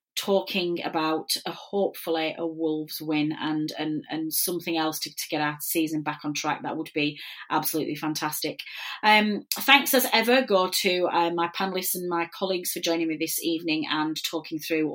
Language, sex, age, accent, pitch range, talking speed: English, female, 30-49, British, 155-195 Hz, 180 wpm